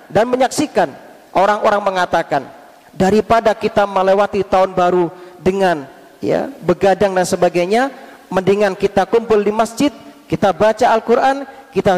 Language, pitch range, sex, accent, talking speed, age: Indonesian, 195-250 Hz, male, native, 115 wpm, 40-59